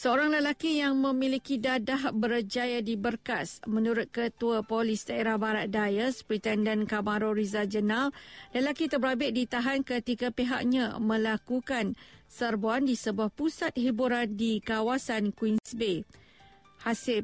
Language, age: Malay, 50-69